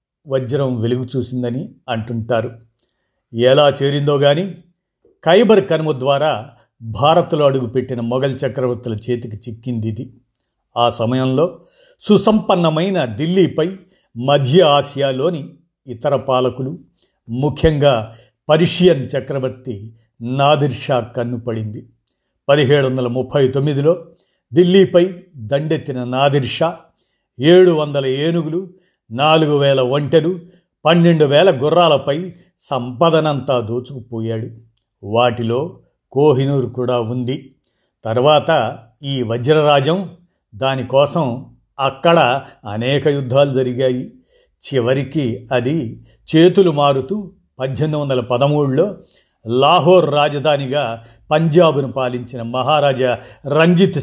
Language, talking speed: Telugu, 80 wpm